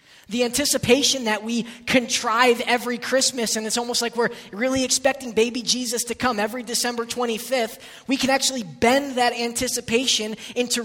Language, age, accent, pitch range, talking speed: English, 20-39, American, 195-240 Hz, 155 wpm